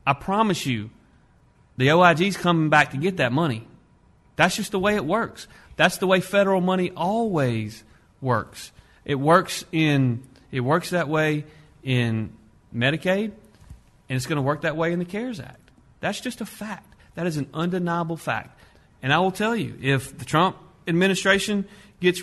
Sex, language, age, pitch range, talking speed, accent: male, English, 40-59, 130-180 Hz, 165 wpm, American